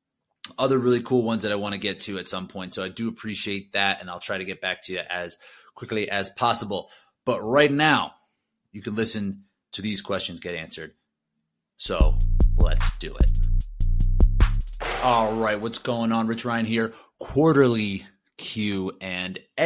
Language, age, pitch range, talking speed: English, 30-49, 95-125 Hz, 170 wpm